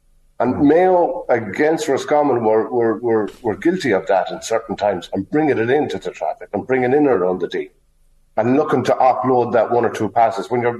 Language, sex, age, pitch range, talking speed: English, male, 50-69, 100-125 Hz, 210 wpm